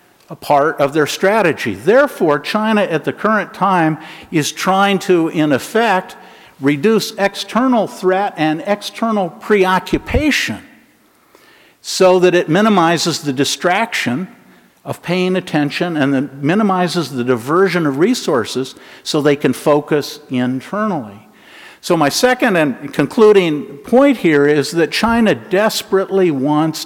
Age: 50-69